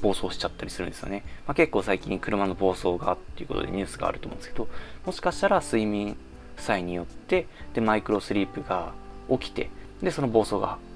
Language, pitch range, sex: Japanese, 90-145 Hz, male